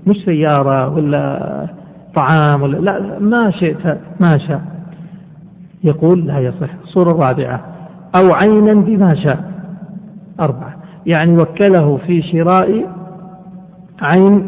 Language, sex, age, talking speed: Arabic, male, 50-69, 100 wpm